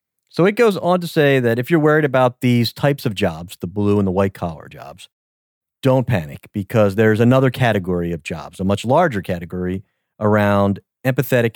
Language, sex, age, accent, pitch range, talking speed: English, male, 40-59, American, 100-125 Hz, 185 wpm